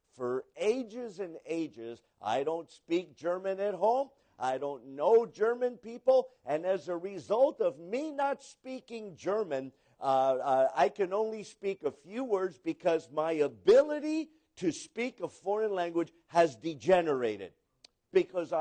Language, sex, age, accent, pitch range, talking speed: English, male, 50-69, American, 145-220 Hz, 140 wpm